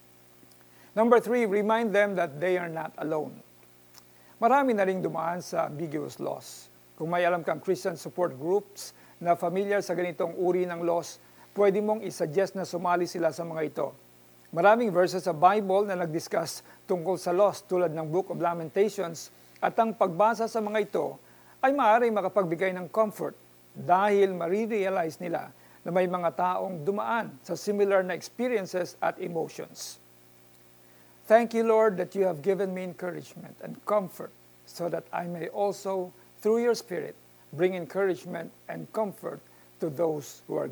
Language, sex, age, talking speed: Filipino, male, 50-69, 155 wpm